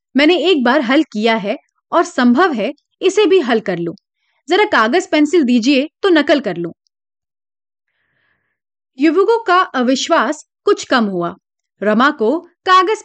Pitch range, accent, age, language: 245-360 Hz, native, 30-49, Hindi